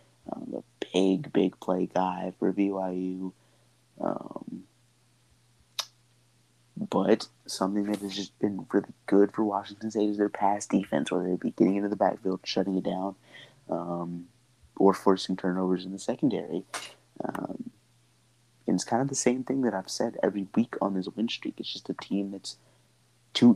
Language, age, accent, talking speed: English, 30-49, American, 165 wpm